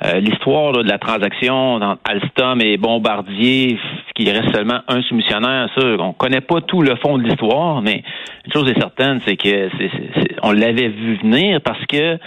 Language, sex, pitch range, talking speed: French, male, 110-135 Hz, 205 wpm